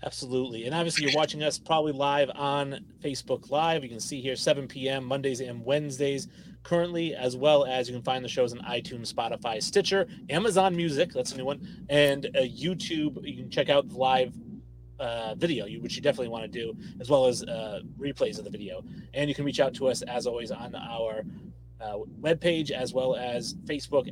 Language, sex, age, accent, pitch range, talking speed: English, male, 30-49, American, 130-160 Hz, 200 wpm